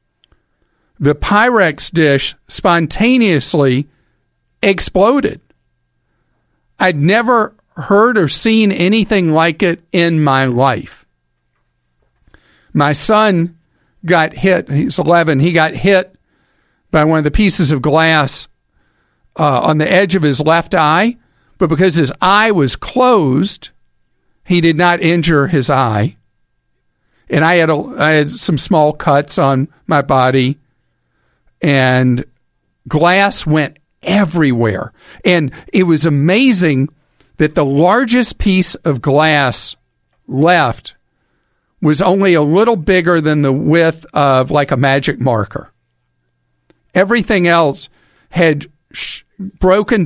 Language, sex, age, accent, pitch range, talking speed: English, male, 50-69, American, 135-185 Hz, 115 wpm